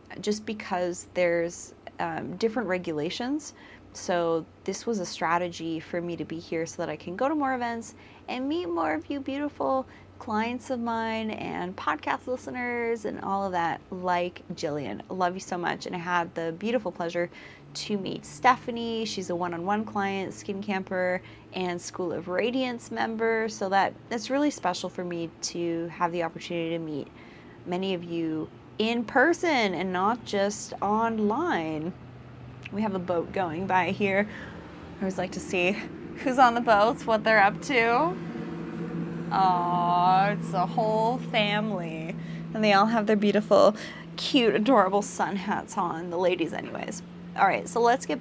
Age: 30-49